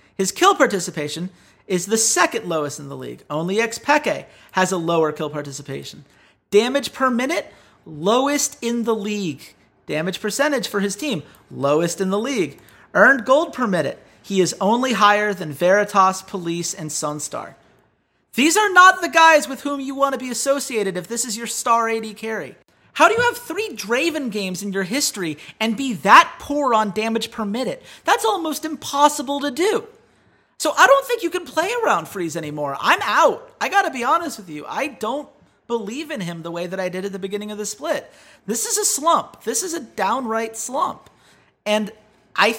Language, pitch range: English, 175-275 Hz